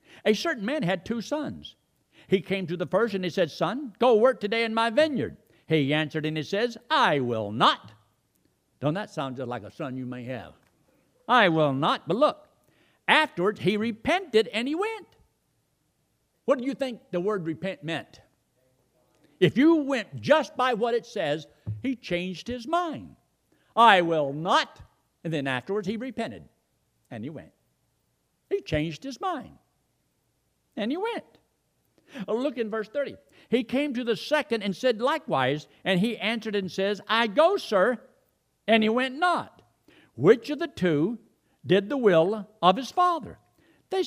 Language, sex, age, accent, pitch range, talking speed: English, male, 60-79, American, 170-270 Hz, 165 wpm